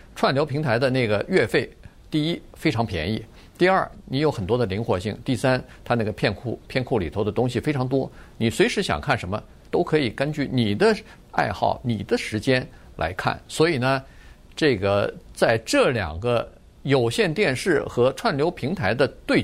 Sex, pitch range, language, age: male, 110-155 Hz, Chinese, 50-69